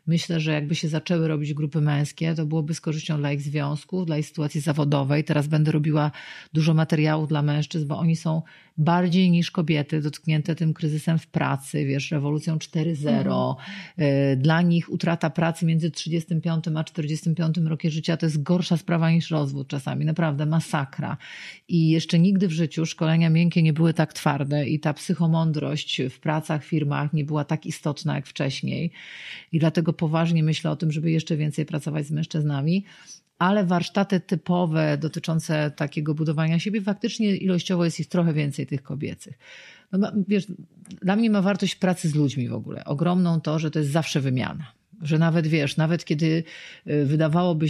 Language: Polish